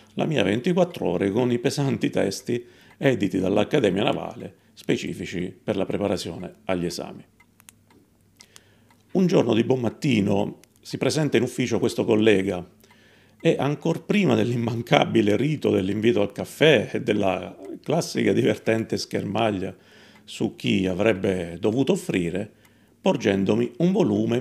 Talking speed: 120 wpm